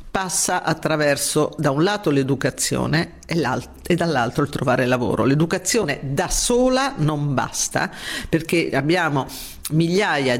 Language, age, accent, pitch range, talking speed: Italian, 50-69, native, 145-185 Hz, 115 wpm